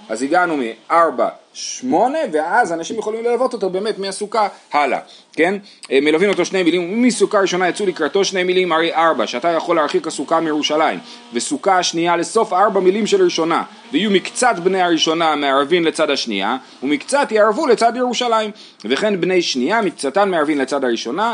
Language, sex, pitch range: Hebrew, male, 155-215 Hz